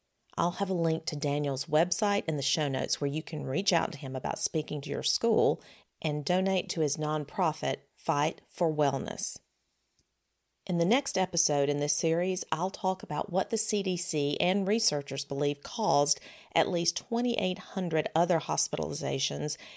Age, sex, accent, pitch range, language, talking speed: 40-59, female, American, 145-185 Hz, English, 160 wpm